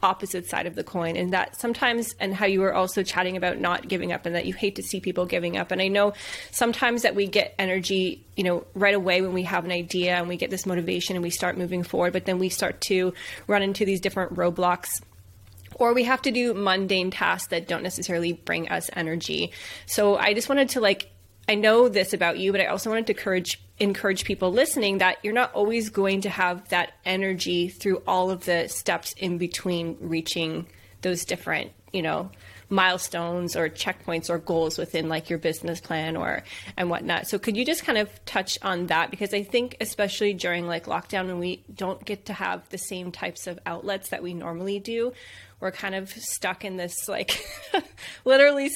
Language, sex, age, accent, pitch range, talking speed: English, female, 20-39, American, 175-205 Hz, 210 wpm